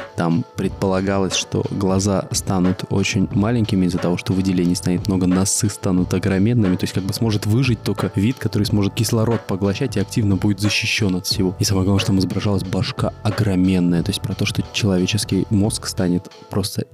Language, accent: Russian, native